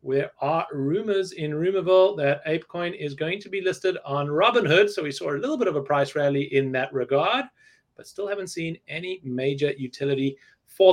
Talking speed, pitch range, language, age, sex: 190 wpm, 140-195 Hz, English, 30-49, male